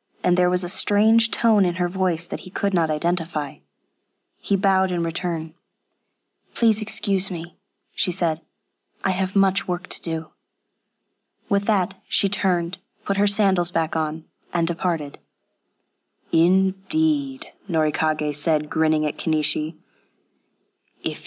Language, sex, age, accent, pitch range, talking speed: English, female, 20-39, American, 155-185 Hz, 135 wpm